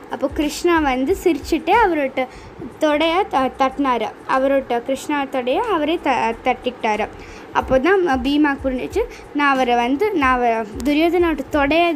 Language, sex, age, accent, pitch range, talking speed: Tamil, female, 20-39, native, 260-340 Hz, 120 wpm